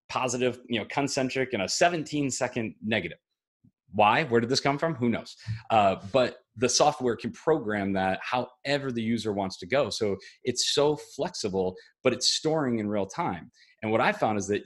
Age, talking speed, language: 30-49, 190 wpm, English